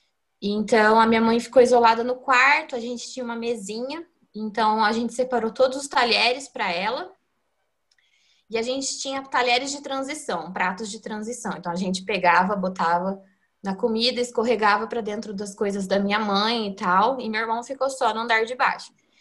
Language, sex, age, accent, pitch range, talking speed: Portuguese, female, 20-39, Brazilian, 205-270 Hz, 180 wpm